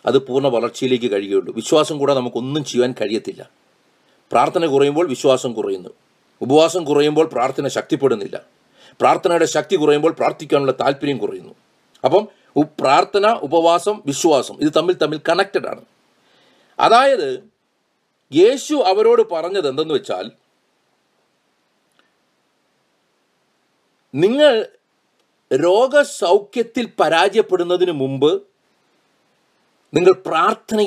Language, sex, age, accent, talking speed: English, male, 40-59, Indian, 55 wpm